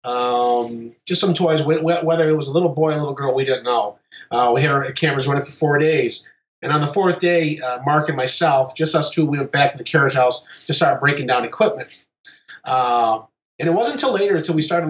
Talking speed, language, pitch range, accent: 240 wpm, English, 140-175 Hz, American